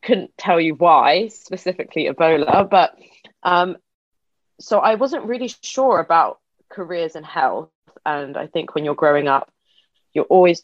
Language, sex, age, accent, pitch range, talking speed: English, female, 20-39, British, 150-185 Hz, 145 wpm